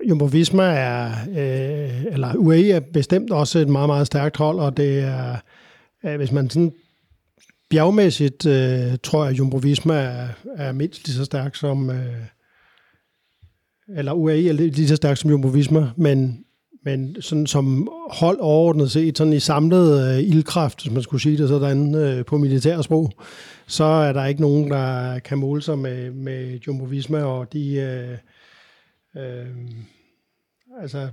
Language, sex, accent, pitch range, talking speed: Danish, male, native, 135-155 Hz, 145 wpm